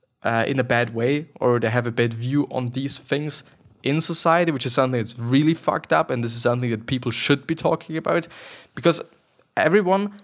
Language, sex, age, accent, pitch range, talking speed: English, male, 20-39, German, 120-150 Hz, 205 wpm